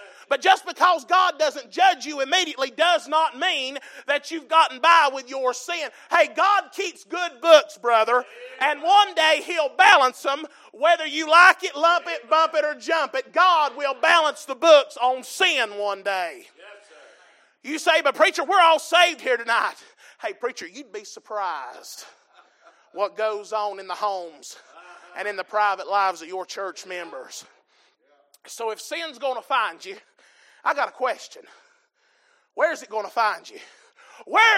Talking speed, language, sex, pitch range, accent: 170 wpm, English, male, 235-345 Hz, American